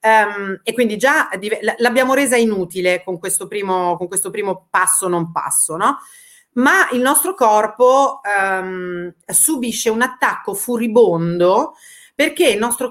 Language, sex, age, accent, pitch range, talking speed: Italian, female, 30-49, native, 185-250 Hz, 135 wpm